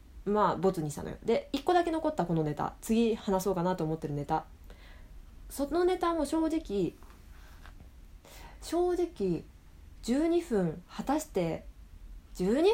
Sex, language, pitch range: female, Japanese, 160-240 Hz